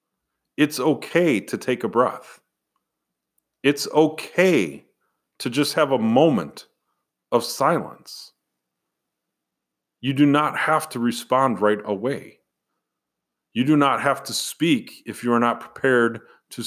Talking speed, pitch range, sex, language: 125 wpm, 115-155 Hz, male, English